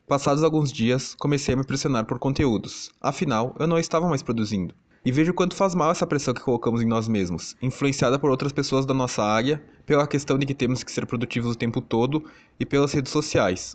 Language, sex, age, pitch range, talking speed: Portuguese, male, 20-39, 120-145 Hz, 220 wpm